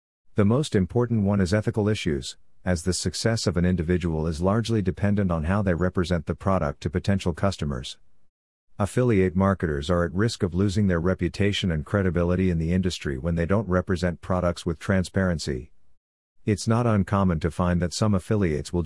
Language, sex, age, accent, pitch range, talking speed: English, male, 50-69, American, 85-100 Hz, 175 wpm